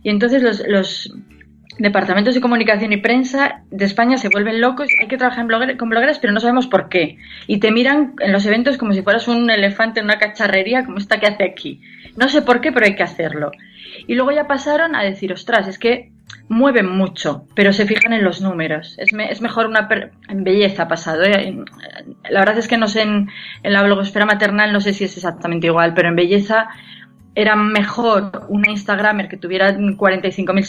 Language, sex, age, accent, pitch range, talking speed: Spanish, female, 20-39, Spanish, 195-235 Hz, 210 wpm